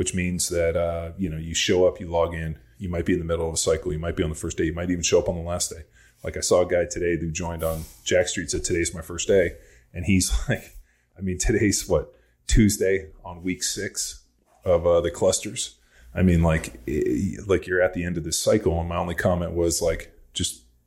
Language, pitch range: English, 80-90 Hz